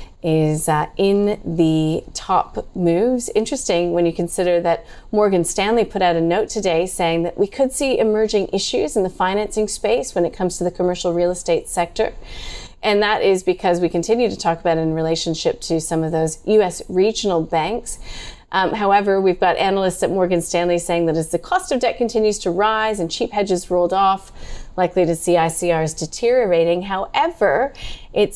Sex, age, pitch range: female, 30-49, 170-220 Hz